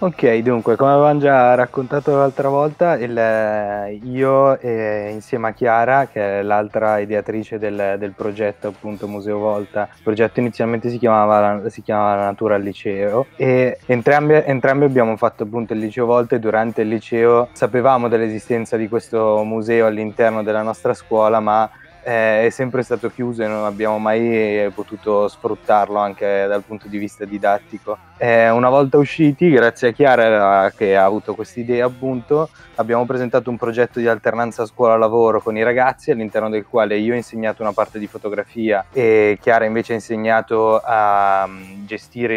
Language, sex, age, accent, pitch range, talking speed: Italian, male, 20-39, native, 105-120 Hz, 160 wpm